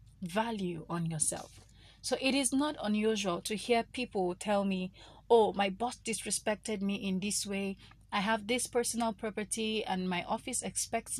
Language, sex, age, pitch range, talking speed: English, female, 30-49, 175-225 Hz, 160 wpm